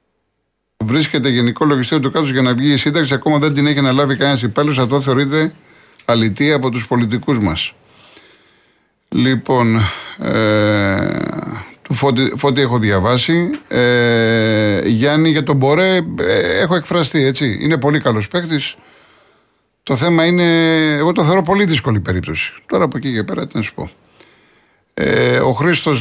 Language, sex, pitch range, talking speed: Greek, male, 120-150 Hz, 145 wpm